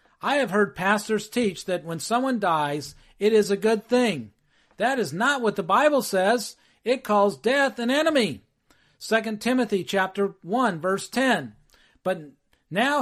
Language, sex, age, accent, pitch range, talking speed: English, male, 50-69, American, 180-245 Hz, 155 wpm